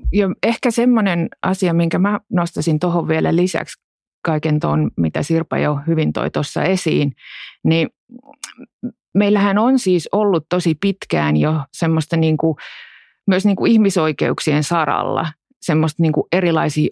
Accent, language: native, Finnish